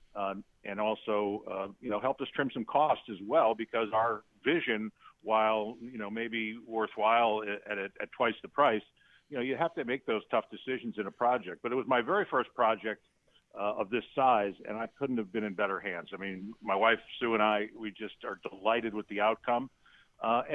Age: 50-69